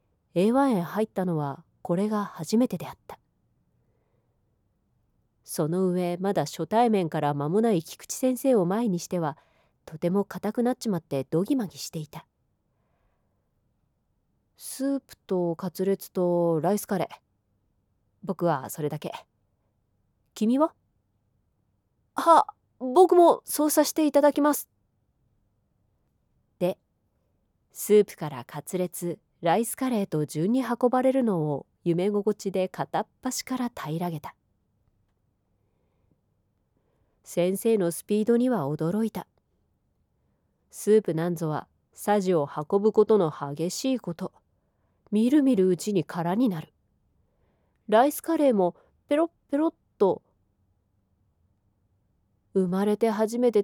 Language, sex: Japanese, female